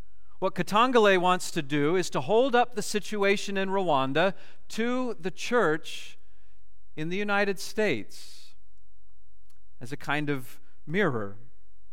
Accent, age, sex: American, 40-59, male